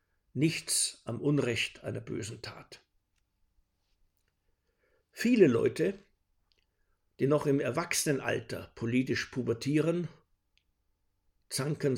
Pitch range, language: 95-140 Hz, German